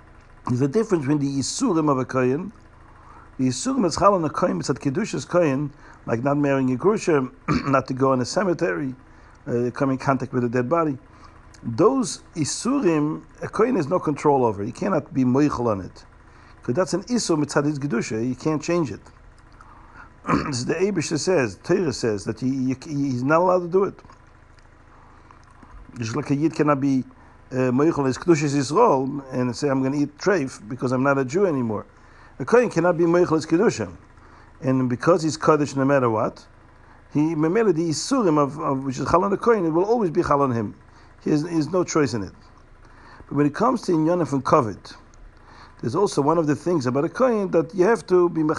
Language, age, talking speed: English, 50-69, 190 wpm